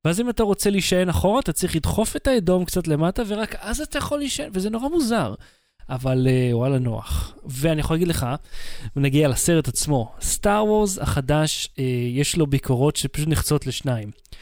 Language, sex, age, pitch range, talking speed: Hebrew, male, 20-39, 135-190 Hz, 175 wpm